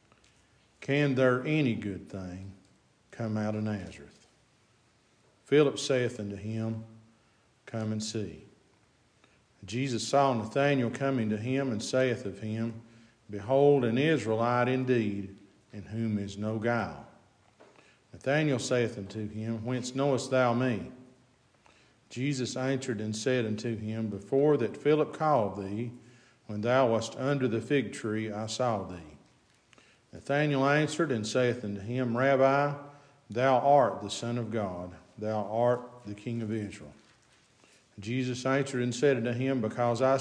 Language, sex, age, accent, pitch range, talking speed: English, male, 50-69, American, 110-135 Hz, 135 wpm